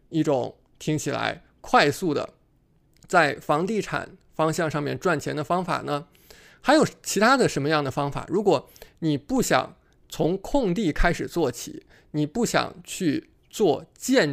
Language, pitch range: Chinese, 150-190 Hz